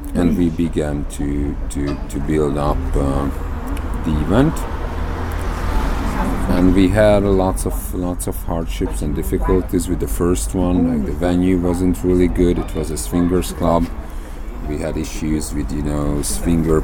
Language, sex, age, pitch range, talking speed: Bulgarian, male, 40-59, 75-90 Hz, 155 wpm